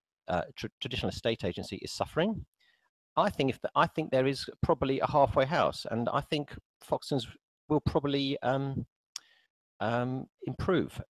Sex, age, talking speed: male, 40-59, 150 wpm